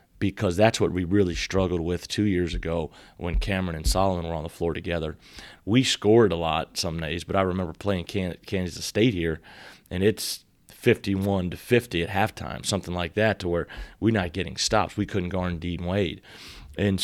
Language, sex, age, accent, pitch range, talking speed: English, male, 30-49, American, 85-100 Hz, 190 wpm